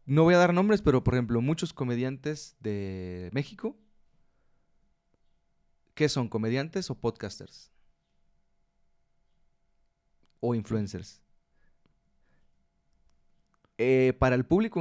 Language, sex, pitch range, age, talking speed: Spanish, male, 100-140 Hz, 30-49, 95 wpm